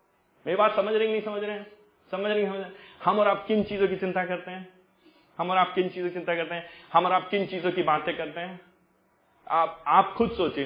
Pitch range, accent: 130-190 Hz, native